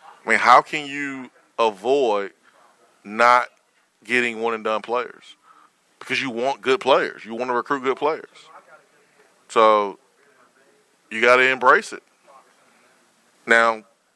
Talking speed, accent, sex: 120 wpm, American, male